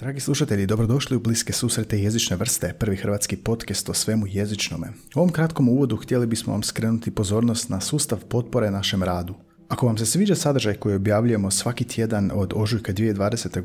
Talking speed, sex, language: 175 wpm, male, Croatian